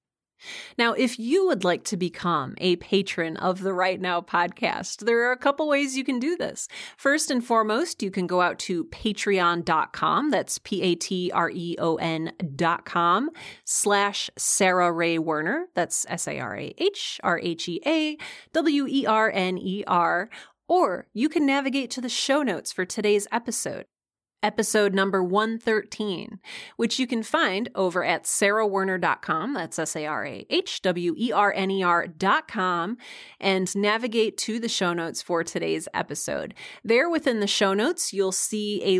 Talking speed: 125 wpm